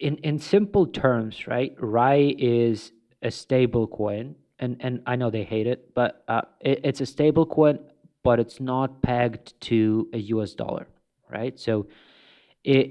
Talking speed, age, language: 165 wpm, 30-49, English